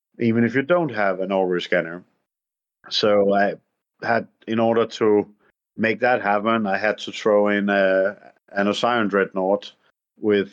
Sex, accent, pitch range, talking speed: male, Danish, 95-110 Hz, 155 wpm